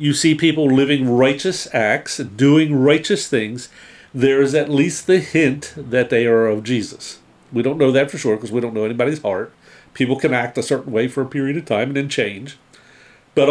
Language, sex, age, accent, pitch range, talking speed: English, male, 50-69, American, 120-155 Hz, 210 wpm